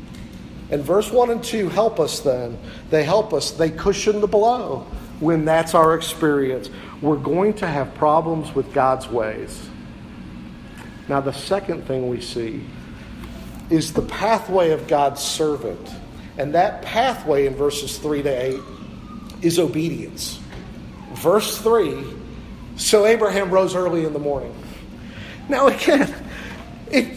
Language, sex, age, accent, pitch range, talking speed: English, male, 50-69, American, 150-225 Hz, 135 wpm